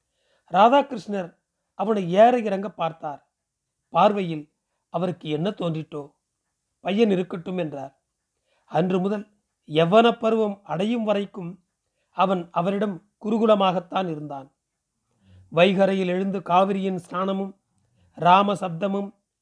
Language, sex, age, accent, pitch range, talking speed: Tamil, male, 40-59, native, 165-220 Hz, 85 wpm